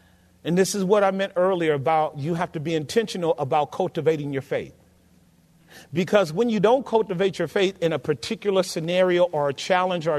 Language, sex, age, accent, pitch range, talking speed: English, male, 40-59, American, 180-290 Hz, 190 wpm